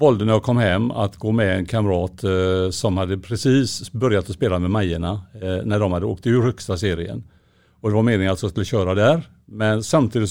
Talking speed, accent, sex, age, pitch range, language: 220 wpm, Norwegian, male, 50-69, 100-130 Hz, Swedish